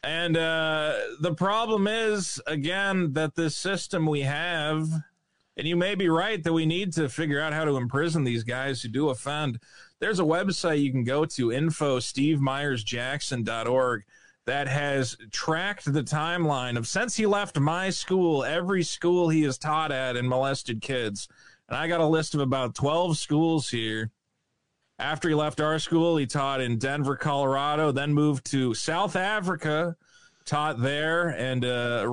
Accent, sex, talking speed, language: American, male, 160 wpm, English